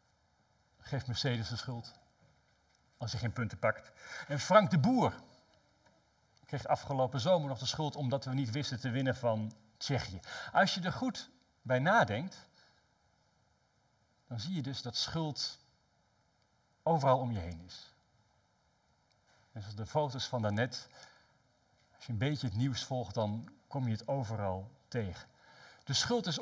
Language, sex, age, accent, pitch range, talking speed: Dutch, male, 50-69, Dutch, 110-145 Hz, 150 wpm